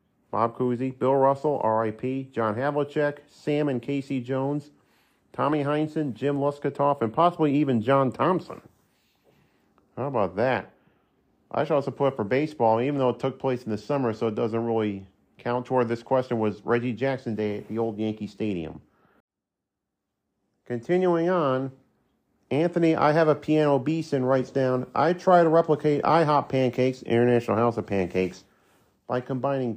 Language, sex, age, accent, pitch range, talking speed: English, male, 40-59, American, 115-145 Hz, 160 wpm